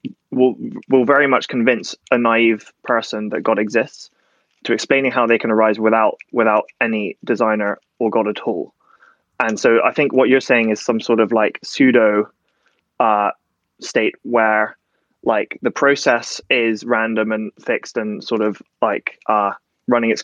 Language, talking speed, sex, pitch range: English, 165 wpm, male, 110-125 Hz